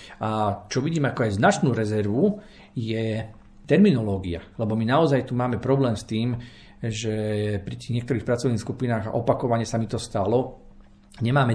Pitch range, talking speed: 110-135 Hz, 150 wpm